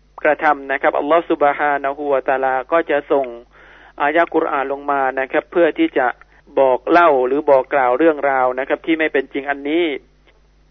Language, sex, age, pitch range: Thai, male, 30-49, 140-160 Hz